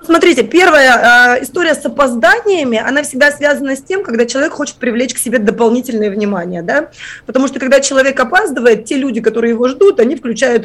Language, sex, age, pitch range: Russian, female, 20-39, 225-290 Hz